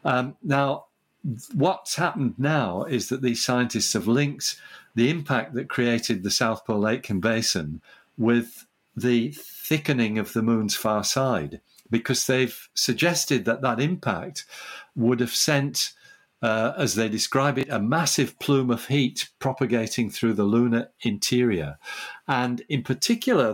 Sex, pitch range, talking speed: male, 115-140 Hz, 145 wpm